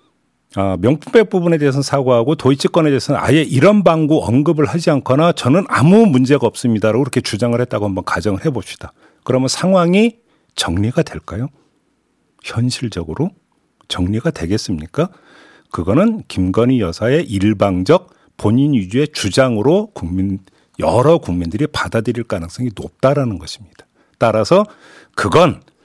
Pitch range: 110-155 Hz